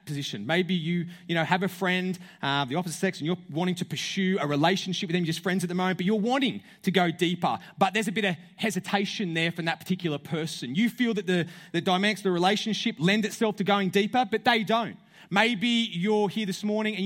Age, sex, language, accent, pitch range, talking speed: 30-49, male, English, Australian, 165-200 Hz, 230 wpm